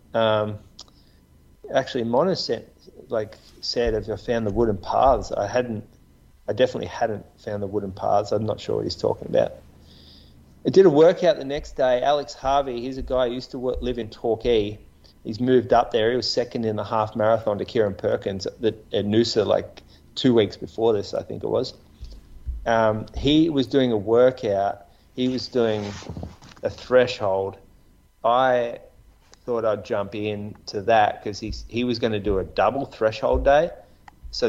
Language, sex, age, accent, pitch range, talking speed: English, male, 30-49, Australian, 85-115 Hz, 180 wpm